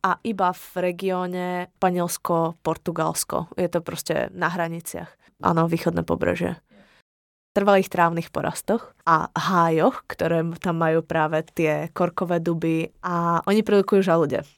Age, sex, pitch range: 20-39, female, 165-185 Hz